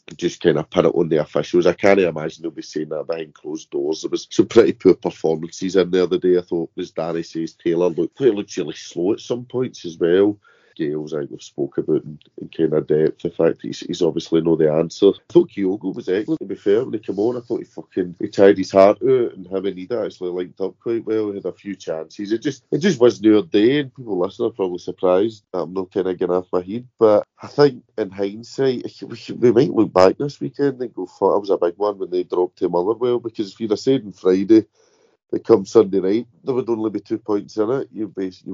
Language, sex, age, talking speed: English, male, 30-49, 255 wpm